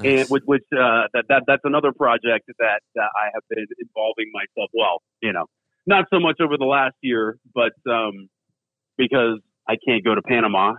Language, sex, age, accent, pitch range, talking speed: English, male, 40-59, American, 120-155 Hz, 190 wpm